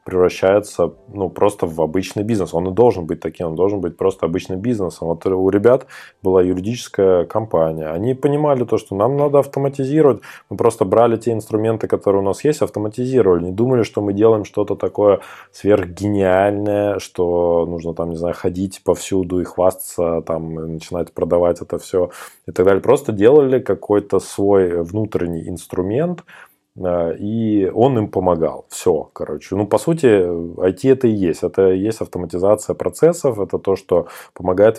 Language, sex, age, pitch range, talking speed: Russian, male, 20-39, 85-105 Hz, 155 wpm